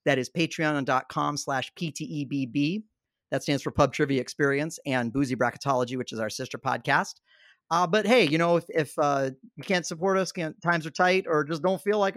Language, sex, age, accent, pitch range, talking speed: English, male, 40-59, American, 130-165 Hz, 195 wpm